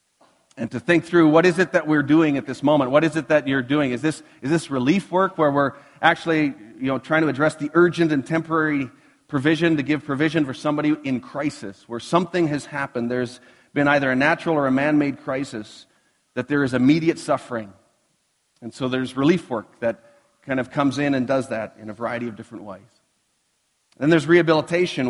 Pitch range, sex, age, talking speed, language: 130-160 Hz, male, 40-59, 205 wpm, English